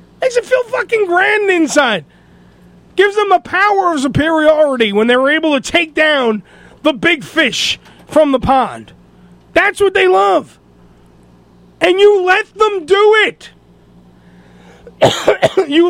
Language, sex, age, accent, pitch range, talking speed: English, male, 40-59, American, 245-365 Hz, 135 wpm